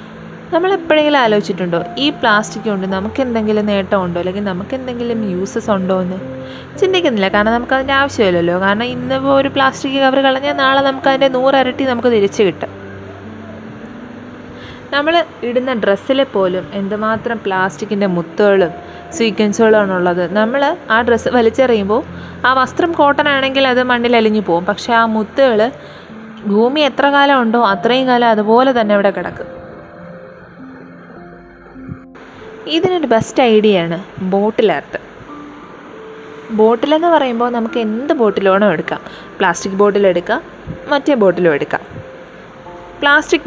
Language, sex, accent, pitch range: Malayalam, female, native, 195-270 Hz